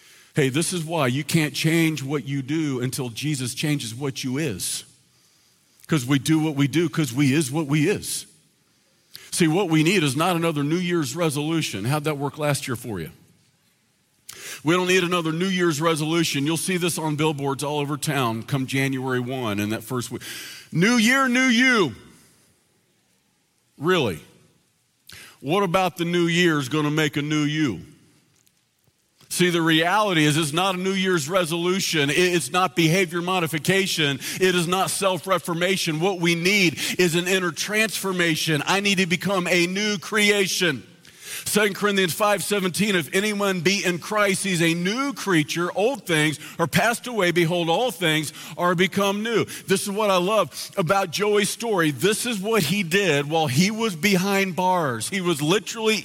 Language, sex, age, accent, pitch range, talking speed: English, male, 50-69, American, 155-200 Hz, 170 wpm